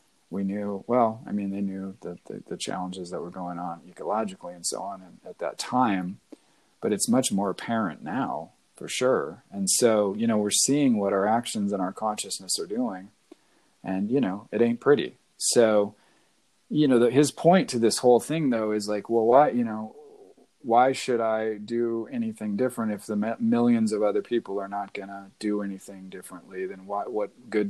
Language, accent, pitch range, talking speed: English, American, 100-115 Hz, 195 wpm